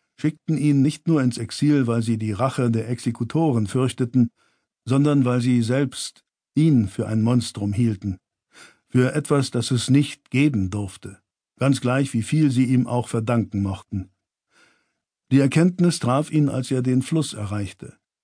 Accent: German